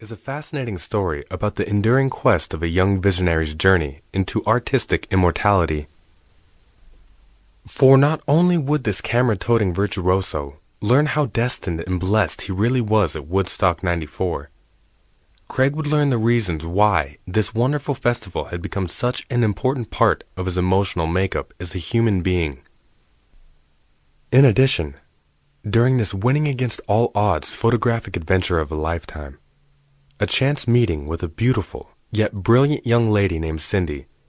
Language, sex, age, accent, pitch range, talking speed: English, male, 20-39, American, 85-120 Hz, 140 wpm